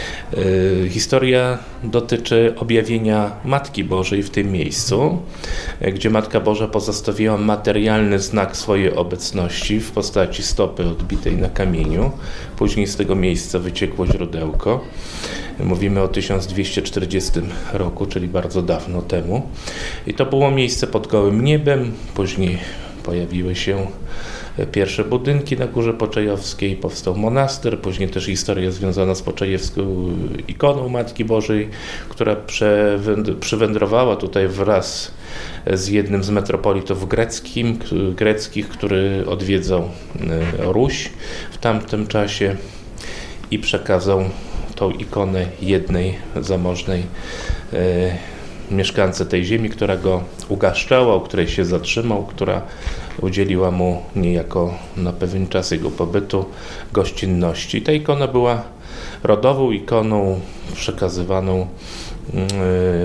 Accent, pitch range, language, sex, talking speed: native, 90-110 Hz, Polish, male, 105 wpm